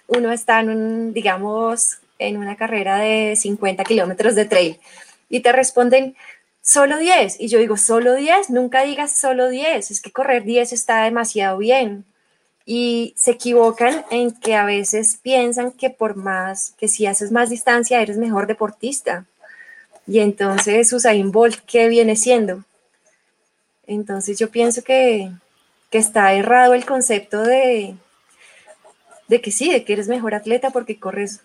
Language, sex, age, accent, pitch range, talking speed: Spanish, female, 20-39, Colombian, 205-245 Hz, 155 wpm